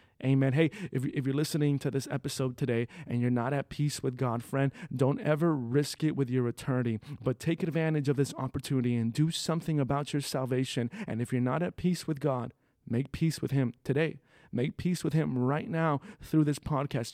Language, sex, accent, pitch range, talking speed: English, male, American, 125-155 Hz, 205 wpm